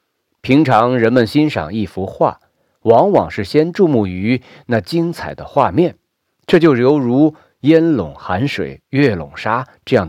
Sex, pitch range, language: male, 95-145 Hz, Chinese